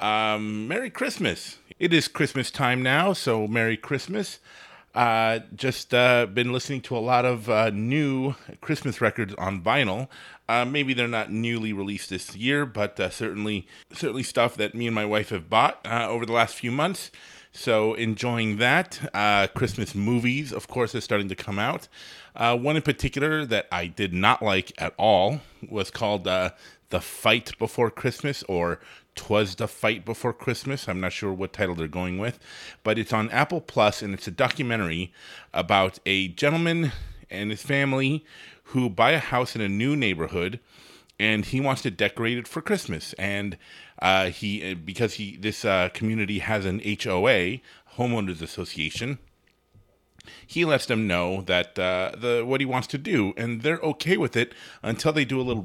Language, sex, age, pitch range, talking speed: English, male, 30-49, 100-125 Hz, 175 wpm